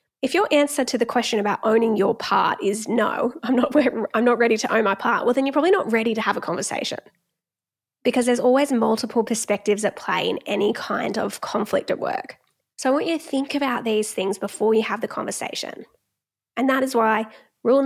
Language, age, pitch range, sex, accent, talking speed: English, 10-29, 215-265 Hz, female, Australian, 210 wpm